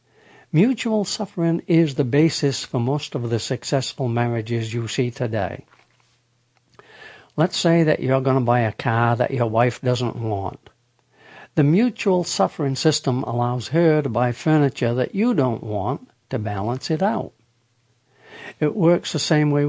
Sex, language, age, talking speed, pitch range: male, English, 60-79, 150 wpm, 120-170 Hz